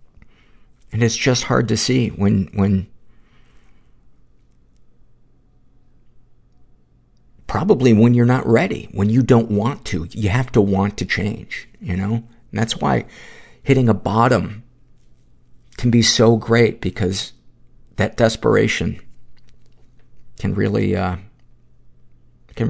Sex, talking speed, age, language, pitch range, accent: male, 115 wpm, 50-69, English, 95-115 Hz, American